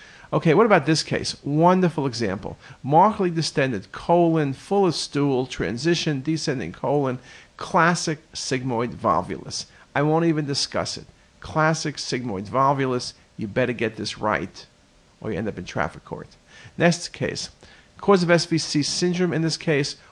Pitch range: 125-160 Hz